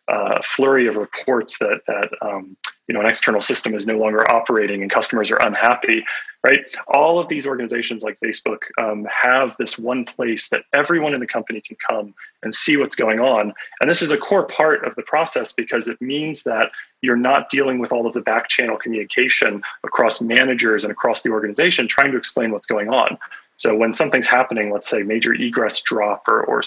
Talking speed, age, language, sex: 200 wpm, 30-49, English, male